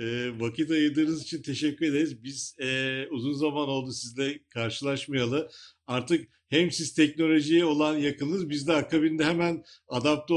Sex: male